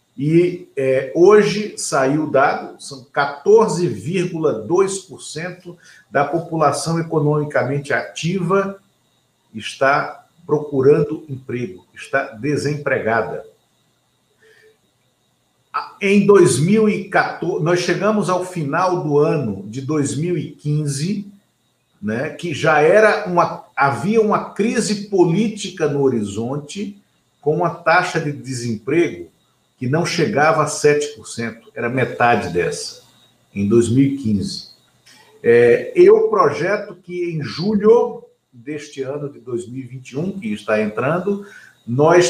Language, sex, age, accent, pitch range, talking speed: Portuguese, male, 50-69, Brazilian, 135-180 Hz, 95 wpm